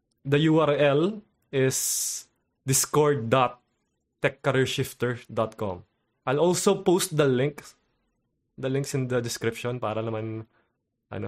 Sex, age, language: male, 20-39, Filipino